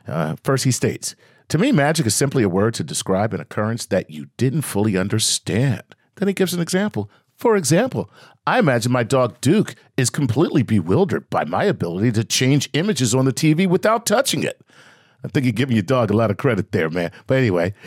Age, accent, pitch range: 50-69, American, 115-170 Hz